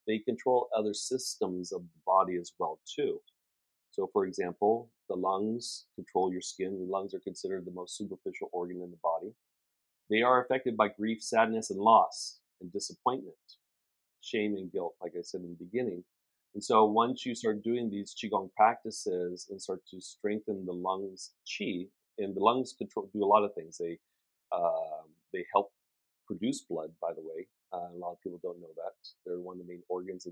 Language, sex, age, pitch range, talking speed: English, male, 40-59, 90-125 Hz, 190 wpm